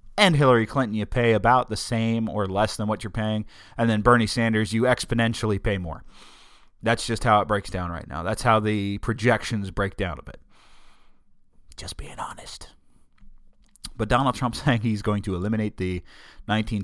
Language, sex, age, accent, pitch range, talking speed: English, male, 30-49, American, 100-125 Hz, 180 wpm